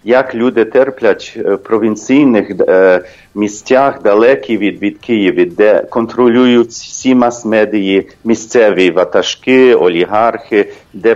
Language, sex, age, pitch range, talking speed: English, male, 40-59, 110-140 Hz, 95 wpm